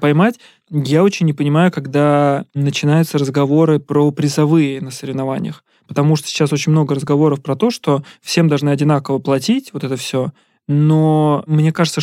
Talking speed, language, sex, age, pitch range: 155 wpm, Russian, male, 20-39, 140-155 Hz